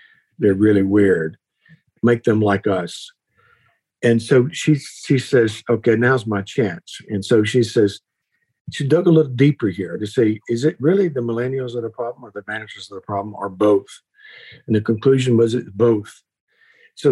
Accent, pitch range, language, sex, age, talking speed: American, 110-145 Hz, English, male, 50-69, 180 wpm